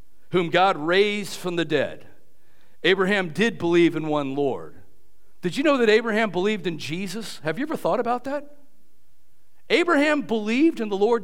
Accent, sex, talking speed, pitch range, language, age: American, male, 165 wpm, 155-225 Hz, English, 50-69